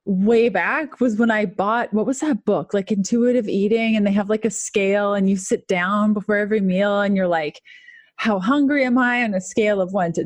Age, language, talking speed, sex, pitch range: 30-49, English, 230 wpm, female, 200-250 Hz